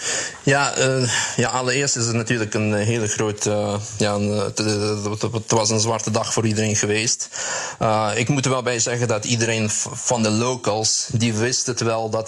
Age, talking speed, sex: 20-39, 190 wpm, male